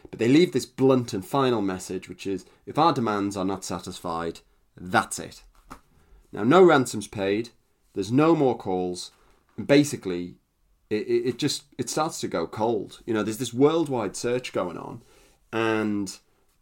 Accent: British